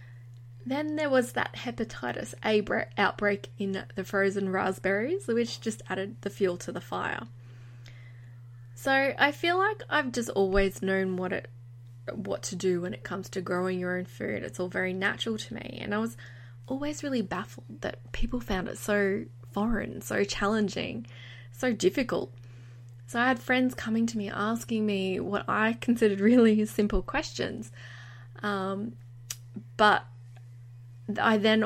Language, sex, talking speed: English, female, 155 wpm